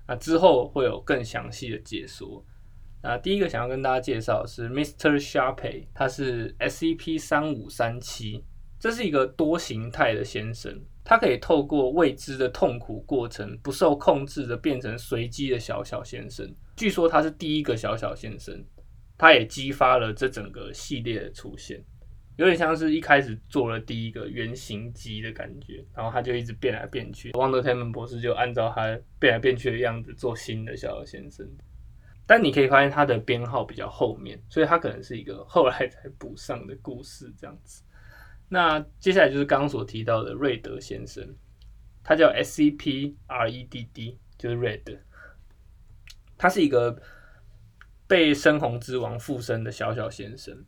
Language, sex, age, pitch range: Chinese, male, 20-39, 110-140 Hz